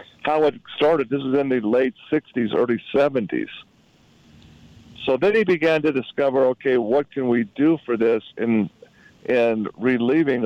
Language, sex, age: English, male, 50-69